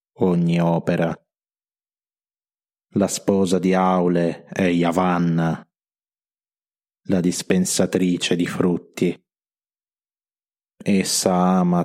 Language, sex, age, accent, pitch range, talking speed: Italian, male, 20-39, native, 85-95 Hz, 70 wpm